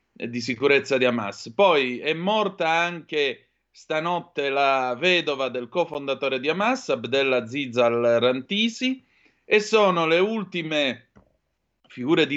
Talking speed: 115 wpm